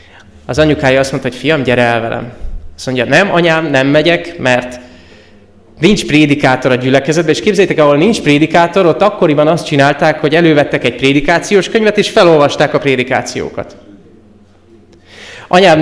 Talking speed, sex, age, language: 150 wpm, male, 20-39, Hungarian